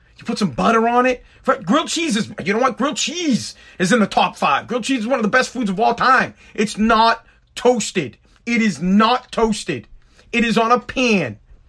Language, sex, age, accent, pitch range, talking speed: English, male, 40-59, American, 165-245 Hz, 220 wpm